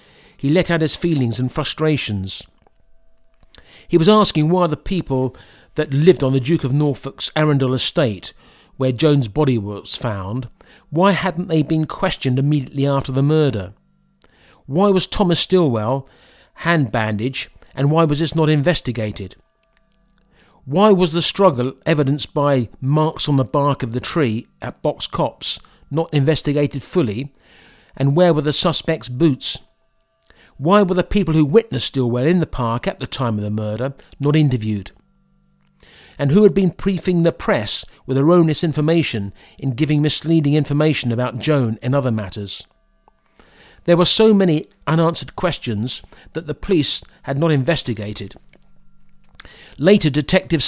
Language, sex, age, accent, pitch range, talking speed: English, male, 50-69, British, 125-165 Hz, 145 wpm